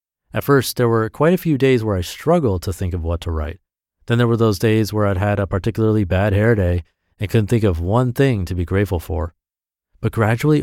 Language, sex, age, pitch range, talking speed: English, male, 30-49, 90-120 Hz, 235 wpm